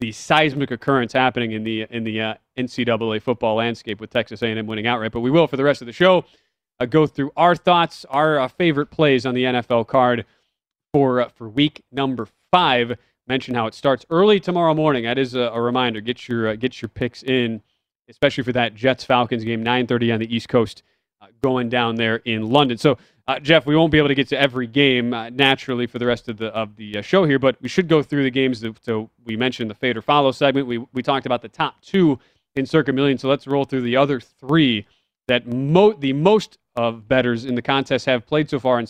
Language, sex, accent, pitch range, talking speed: English, male, American, 120-145 Hz, 240 wpm